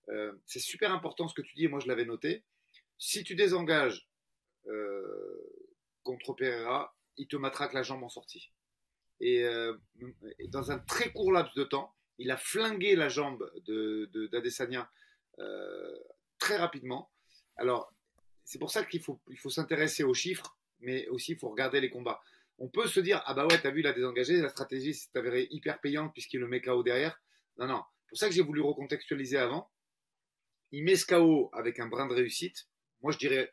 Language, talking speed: French, 195 wpm